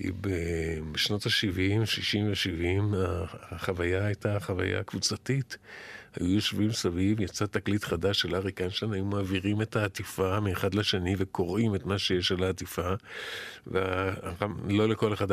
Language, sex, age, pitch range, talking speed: Hebrew, male, 50-69, 95-115 Hz, 125 wpm